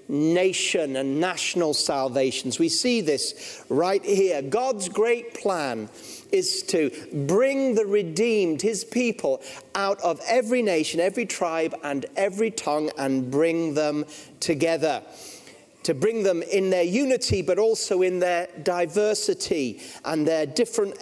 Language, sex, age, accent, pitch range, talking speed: English, male, 40-59, British, 165-230 Hz, 130 wpm